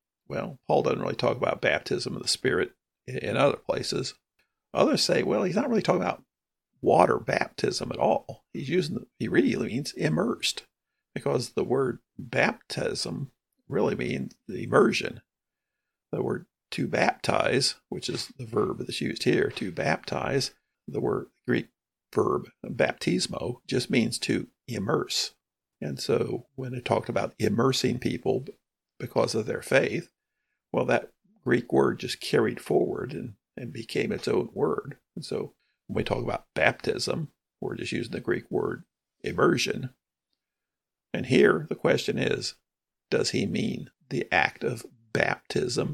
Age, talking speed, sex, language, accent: 50-69, 150 wpm, male, English, American